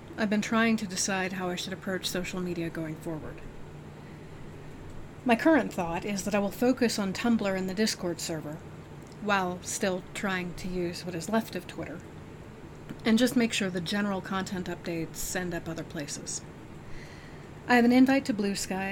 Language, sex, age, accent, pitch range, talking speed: English, female, 30-49, American, 180-210 Hz, 180 wpm